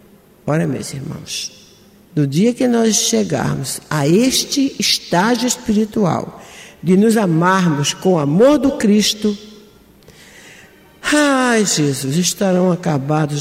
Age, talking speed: 60-79, 105 wpm